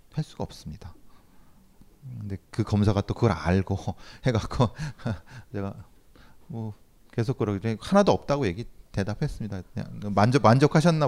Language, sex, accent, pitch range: Korean, male, native, 95-135 Hz